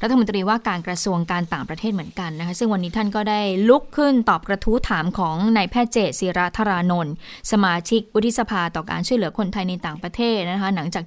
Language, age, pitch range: Thai, 20-39, 185-225 Hz